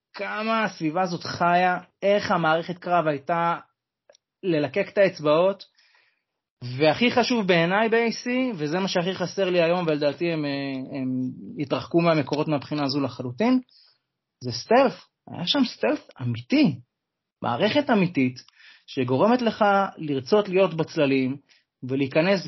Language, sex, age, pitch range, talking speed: Hebrew, male, 30-49, 140-185 Hz, 105 wpm